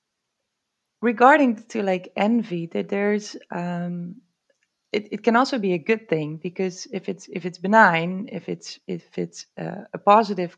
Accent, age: Dutch, 20-39